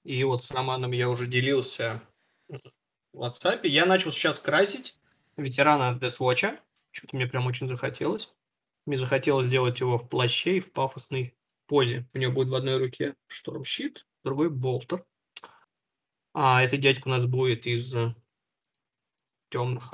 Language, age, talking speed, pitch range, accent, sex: Russian, 20-39, 150 wpm, 125-155 Hz, native, male